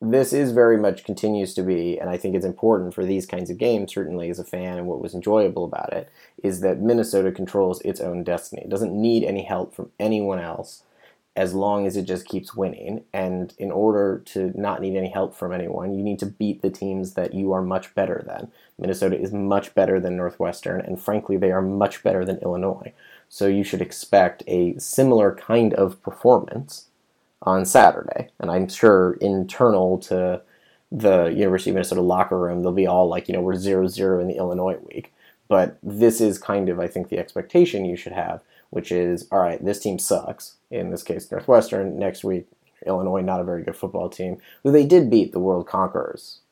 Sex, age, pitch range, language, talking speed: male, 30-49, 90-100 Hz, English, 205 wpm